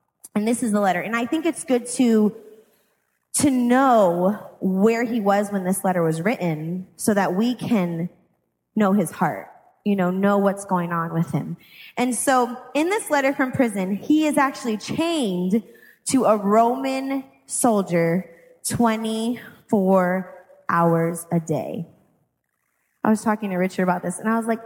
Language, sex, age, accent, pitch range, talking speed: English, female, 20-39, American, 190-270 Hz, 160 wpm